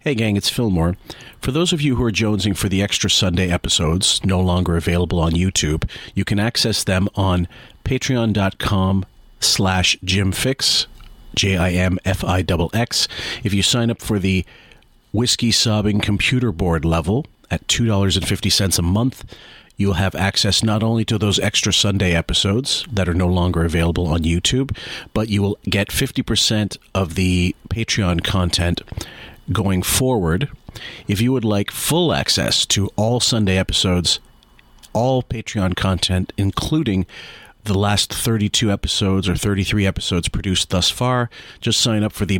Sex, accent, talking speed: male, American, 155 wpm